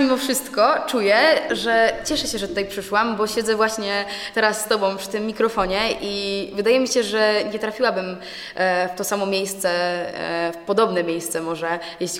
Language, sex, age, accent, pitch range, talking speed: Polish, female, 20-39, native, 185-235 Hz, 165 wpm